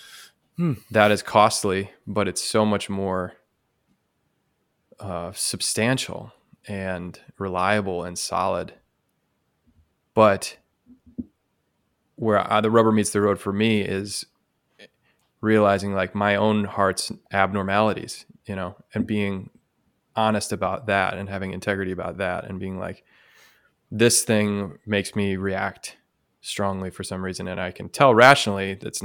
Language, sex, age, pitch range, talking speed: English, male, 20-39, 95-105 Hz, 125 wpm